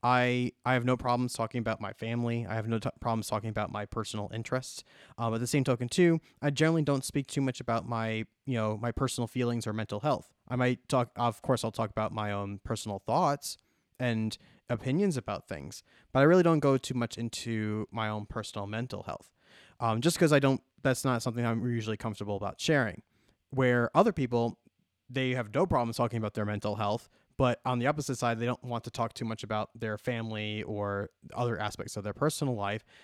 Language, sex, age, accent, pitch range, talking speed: English, male, 20-39, American, 110-130 Hz, 215 wpm